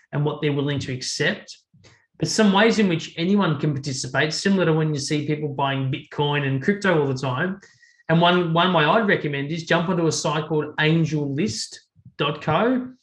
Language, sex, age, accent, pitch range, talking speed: English, male, 20-39, Australian, 140-165 Hz, 185 wpm